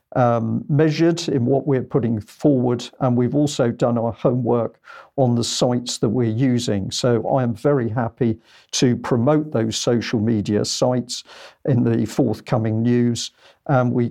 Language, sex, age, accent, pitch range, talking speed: English, male, 50-69, British, 115-135 Hz, 155 wpm